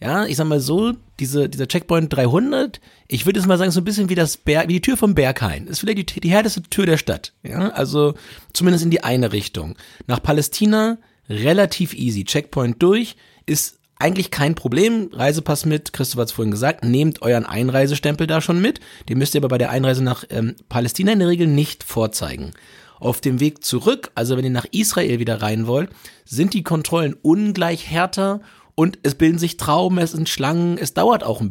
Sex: male